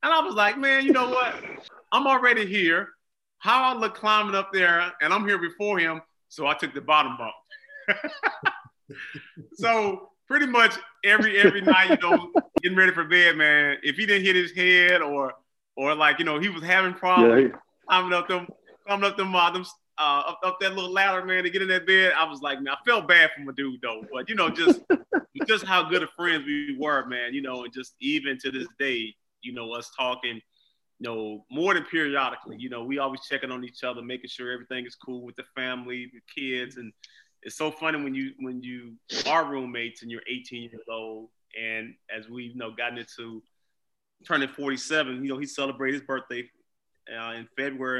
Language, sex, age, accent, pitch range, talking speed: English, male, 30-49, American, 125-185 Hz, 205 wpm